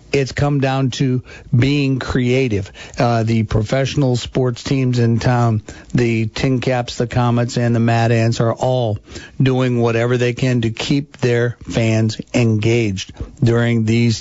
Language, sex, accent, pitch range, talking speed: English, male, American, 115-130 Hz, 150 wpm